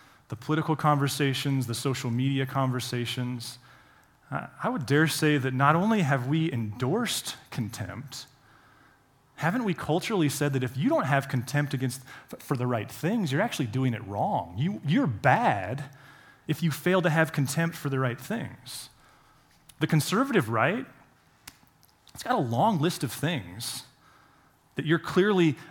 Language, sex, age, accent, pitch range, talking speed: English, male, 30-49, American, 130-160 Hz, 150 wpm